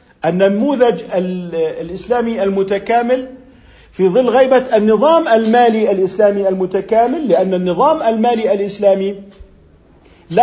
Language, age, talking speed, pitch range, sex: Arabic, 50-69, 85 wpm, 185-240 Hz, male